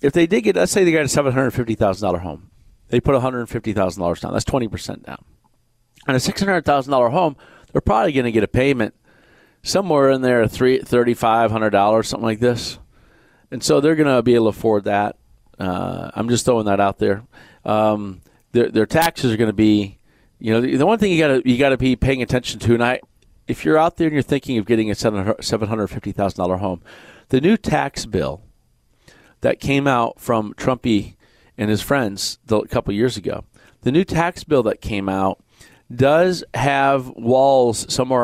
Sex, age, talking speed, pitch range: male, 40-59, 185 wpm, 105-130 Hz